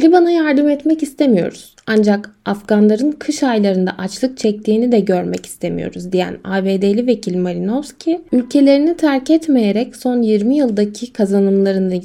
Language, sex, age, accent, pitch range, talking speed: Turkish, female, 10-29, native, 200-275 Hz, 120 wpm